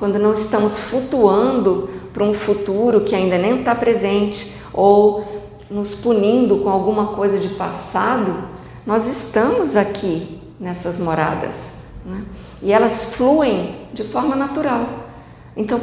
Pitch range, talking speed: 185-225 Hz, 125 wpm